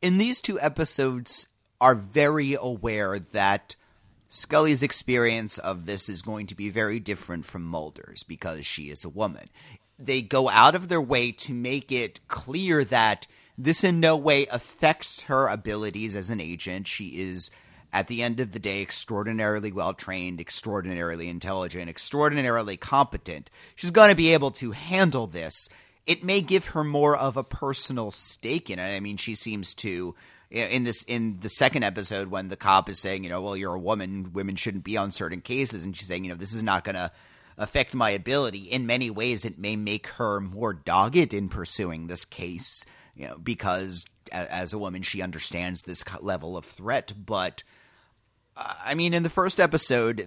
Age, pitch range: 30-49, 95-130 Hz